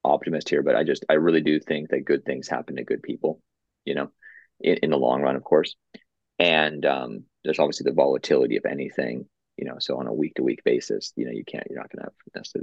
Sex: male